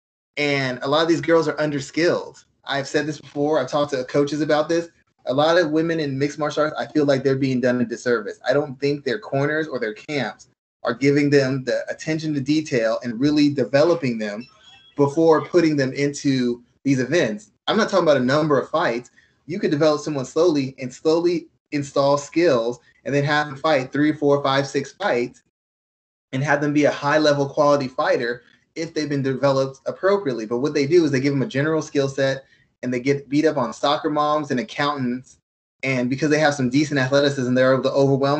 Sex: male